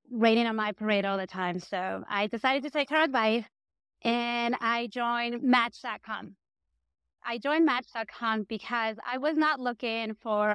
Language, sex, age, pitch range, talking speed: English, female, 30-49, 220-280 Hz, 155 wpm